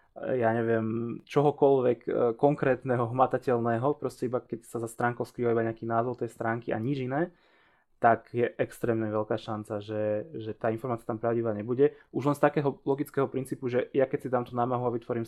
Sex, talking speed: male, 185 wpm